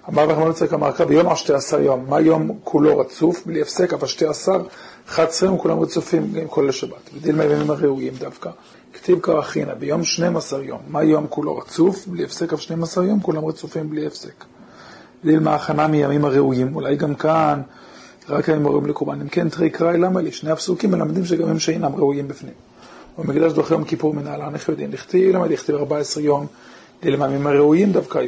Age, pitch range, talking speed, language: 40-59, 145-165 Hz, 110 wpm, Hebrew